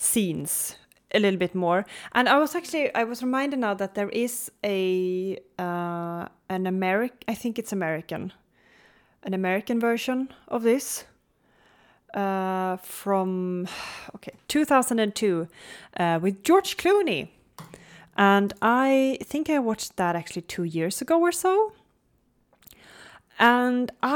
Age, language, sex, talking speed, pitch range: 30-49, English, female, 125 wpm, 180-260 Hz